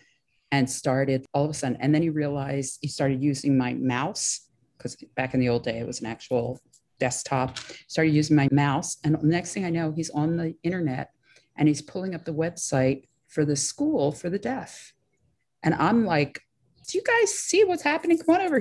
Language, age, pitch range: English, 40-59, 150-220 Hz